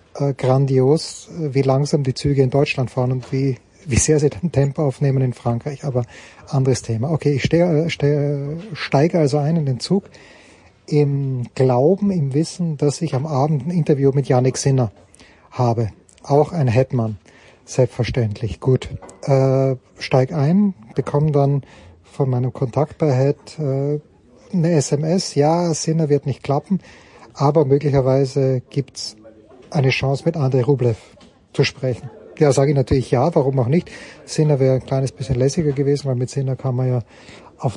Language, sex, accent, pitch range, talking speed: English, male, German, 130-150 Hz, 160 wpm